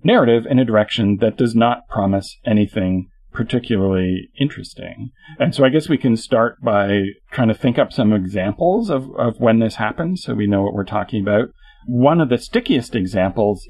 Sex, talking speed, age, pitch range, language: male, 185 wpm, 40-59, 100-130 Hz, English